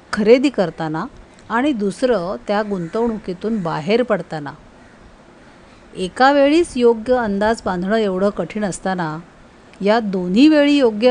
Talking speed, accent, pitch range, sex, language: 105 wpm, native, 190-250 Hz, female, Marathi